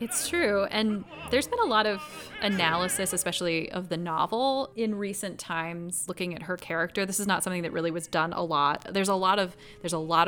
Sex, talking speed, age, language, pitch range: female, 215 wpm, 20-39, English, 165-205 Hz